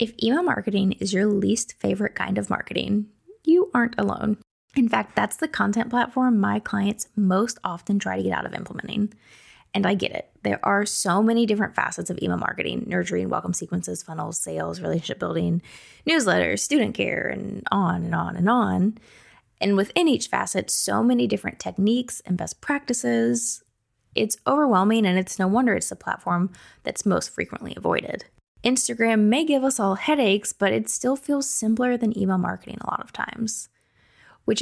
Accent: American